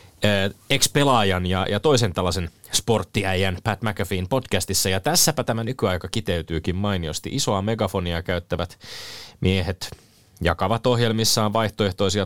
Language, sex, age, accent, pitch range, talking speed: Finnish, male, 30-49, native, 95-115 Hz, 115 wpm